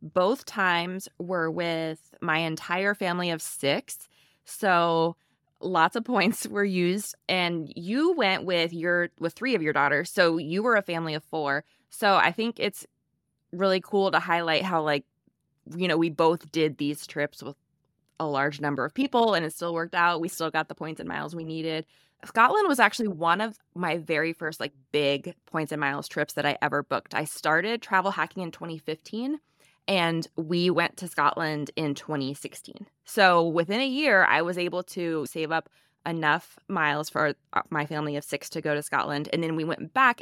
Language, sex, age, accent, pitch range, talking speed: English, female, 20-39, American, 155-190 Hz, 190 wpm